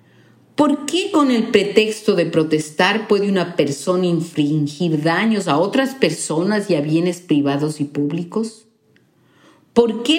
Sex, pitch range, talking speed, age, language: female, 155-245 Hz, 135 wpm, 50-69, Spanish